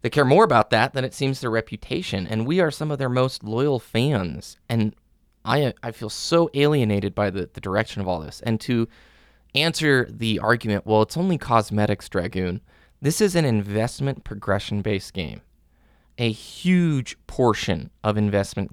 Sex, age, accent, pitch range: male, 20-39, American, 100-130 Hz